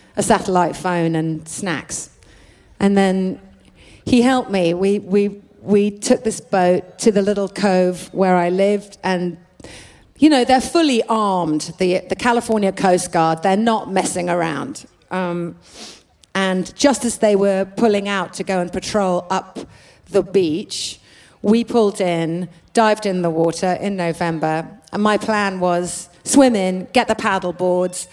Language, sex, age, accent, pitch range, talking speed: English, female, 40-59, British, 175-210 Hz, 155 wpm